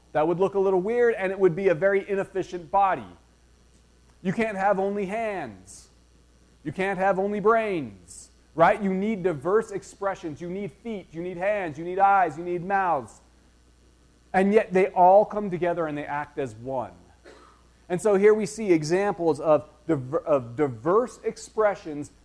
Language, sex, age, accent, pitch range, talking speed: English, male, 30-49, American, 130-200 Hz, 165 wpm